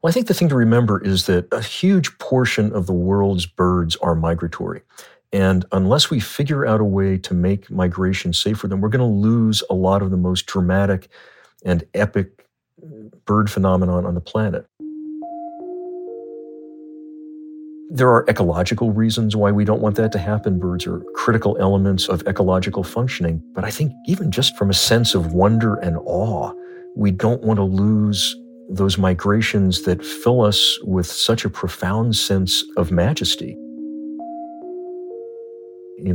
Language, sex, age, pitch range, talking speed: English, male, 50-69, 95-120 Hz, 155 wpm